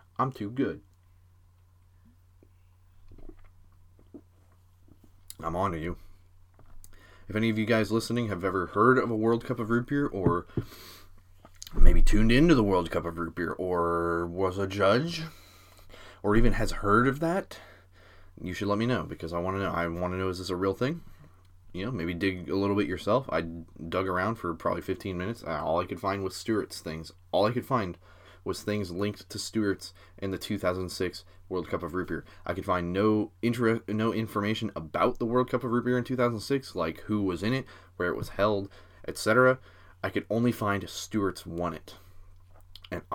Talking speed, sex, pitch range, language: 190 wpm, male, 90-105 Hz, English